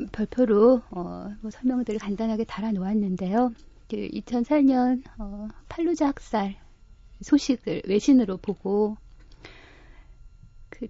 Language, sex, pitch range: Korean, female, 195-245 Hz